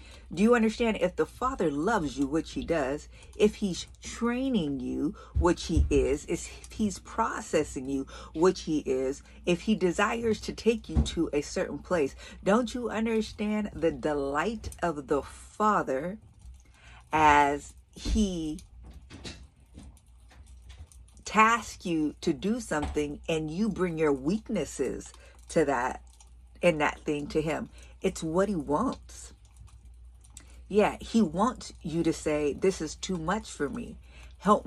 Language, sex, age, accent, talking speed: English, female, 50-69, American, 135 wpm